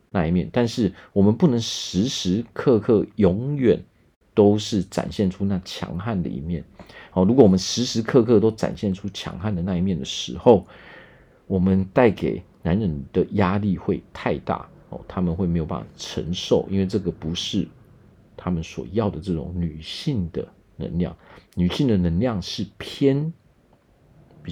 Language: Chinese